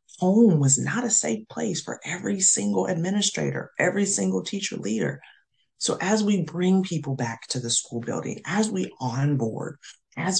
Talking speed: 160 wpm